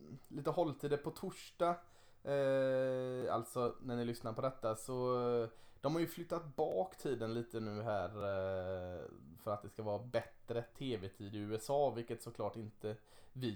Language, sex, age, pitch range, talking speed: Swedish, male, 20-39, 110-135 Hz, 155 wpm